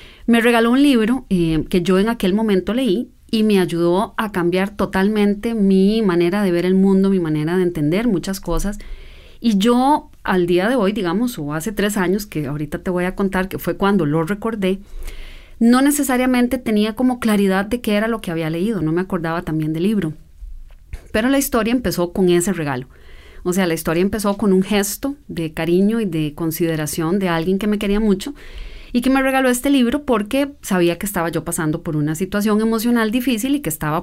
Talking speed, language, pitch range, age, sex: 205 wpm, English, 170-235 Hz, 30-49, female